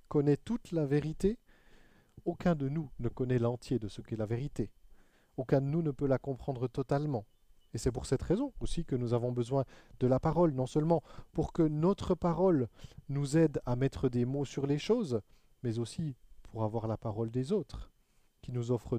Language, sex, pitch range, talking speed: French, male, 120-150 Hz, 195 wpm